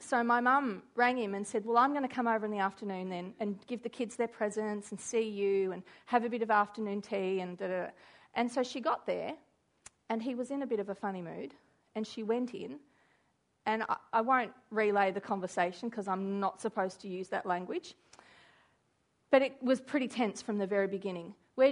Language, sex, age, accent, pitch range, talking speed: English, female, 40-59, Australian, 210-265 Hz, 225 wpm